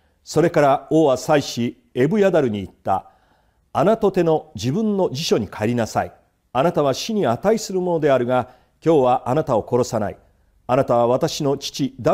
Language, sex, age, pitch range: Japanese, male, 40-59, 110-170 Hz